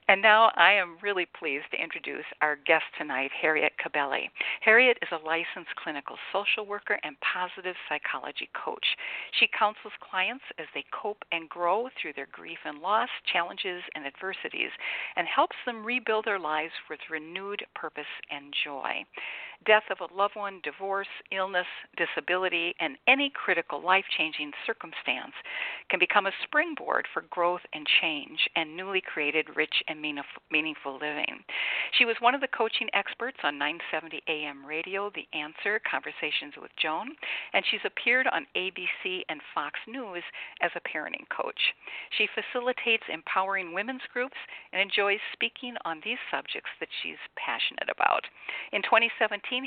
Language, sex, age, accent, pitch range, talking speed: English, female, 50-69, American, 165-230 Hz, 150 wpm